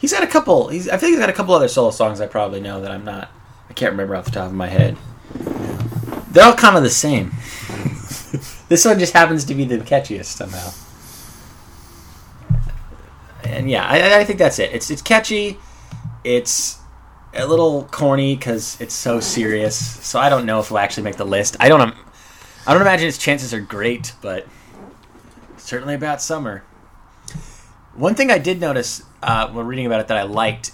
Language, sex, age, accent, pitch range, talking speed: English, male, 20-39, American, 105-130 Hz, 195 wpm